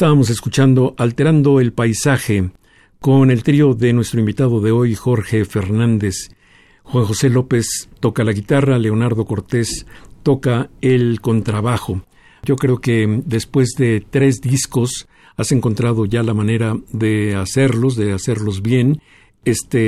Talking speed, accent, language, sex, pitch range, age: 135 wpm, Mexican, Spanish, male, 110-135 Hz, 50-69